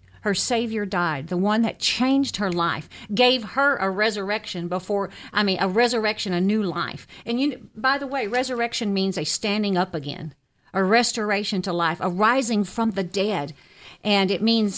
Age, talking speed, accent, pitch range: 50-69, 180 wpm, American, 185-235 Hz